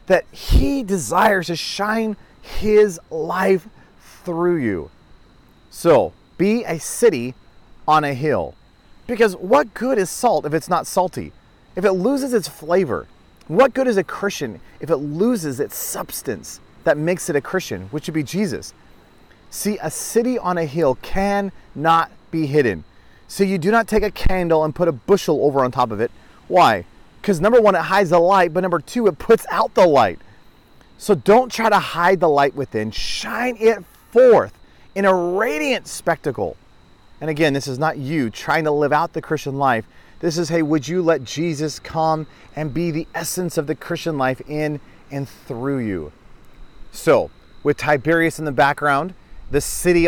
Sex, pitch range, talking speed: male, 145-195 Hz, 175 wpm